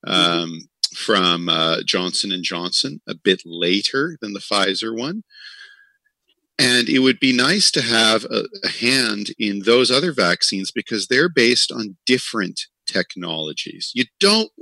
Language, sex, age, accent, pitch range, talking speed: English, male, 50-69, American, 95-135 Hz, 140 wpm